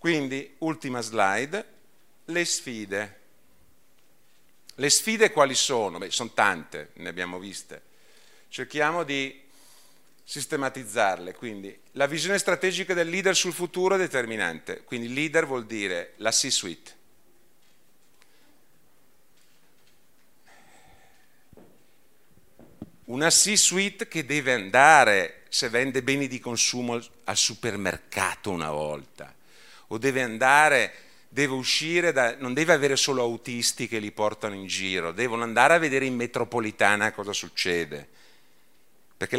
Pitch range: 110-165 Hz